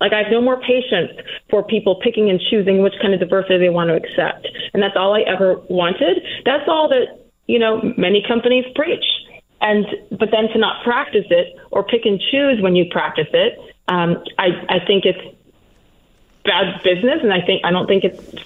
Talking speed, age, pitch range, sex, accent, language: 200 wpm, 30-49, 195-255 Hz, female, American, English